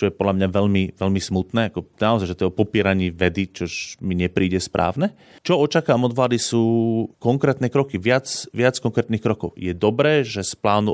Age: 30-49